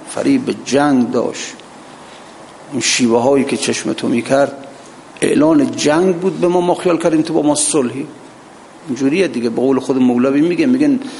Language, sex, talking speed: Persian, male, 165 wpm